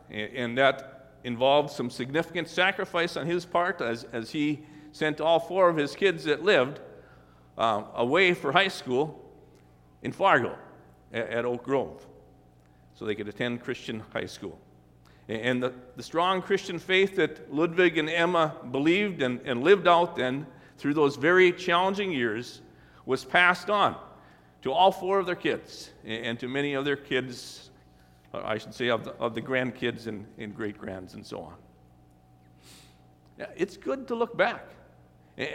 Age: 50-69